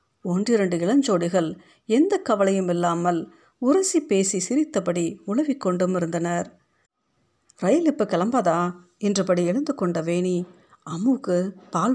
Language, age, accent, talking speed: Tamil, 50-69, native, 95 wpm